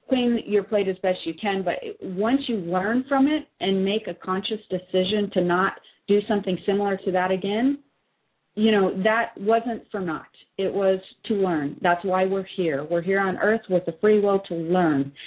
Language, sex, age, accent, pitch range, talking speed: English, female, 30-49, American, 180-215 Hz, 195 wpm